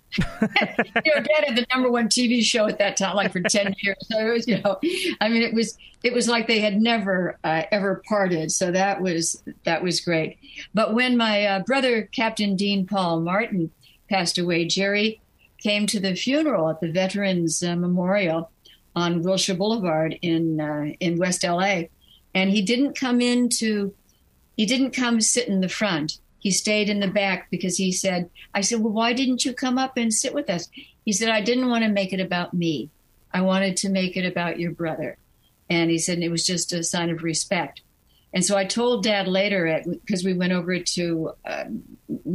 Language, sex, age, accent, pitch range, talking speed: English, female, 60-79, American, 180-230 Hz, 200 wpm